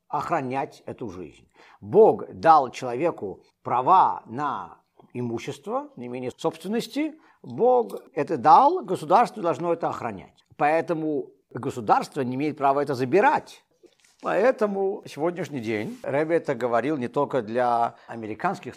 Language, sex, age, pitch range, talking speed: Russian, male, 50-69, 95-150 Hz, 115 wpm